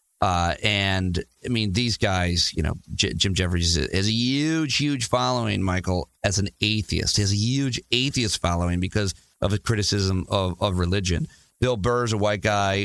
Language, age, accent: English, 40-59, American